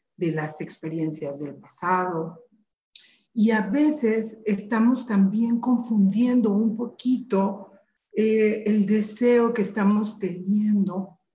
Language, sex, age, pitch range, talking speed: Spanish, female, 50-69, 190-225 Hz, 100 wpm